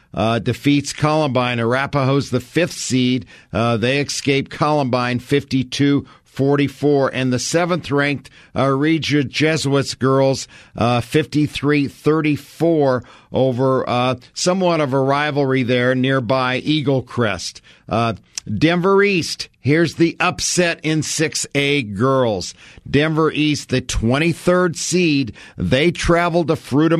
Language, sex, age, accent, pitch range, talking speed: English, male, 50-69, American, 120-150 Hz, 105 wpm